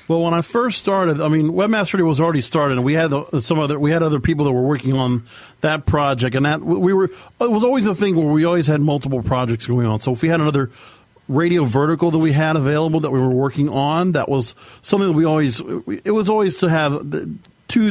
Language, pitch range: English, 135-175 Hz